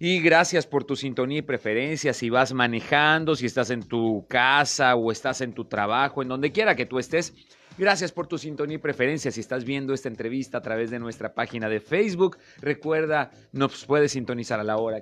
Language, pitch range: Spanish, 130-175 Hz